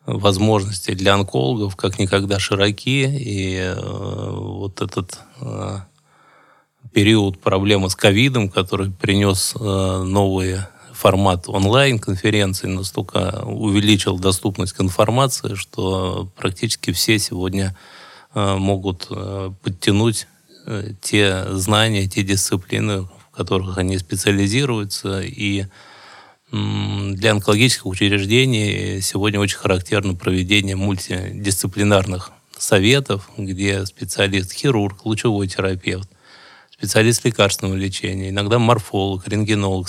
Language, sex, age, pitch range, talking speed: Russian, male, 20-39, 95-105 Hz, 95 wpm